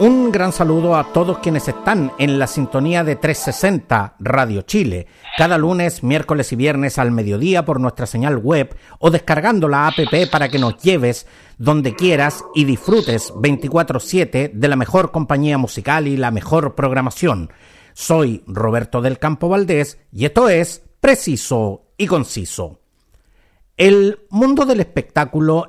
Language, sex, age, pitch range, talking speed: Spanish, male, 50-69, 125-170 Hz, 145 wpm